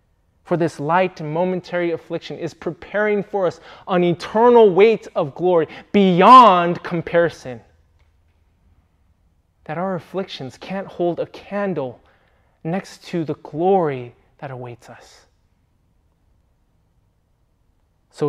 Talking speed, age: 105 wpm, 20-39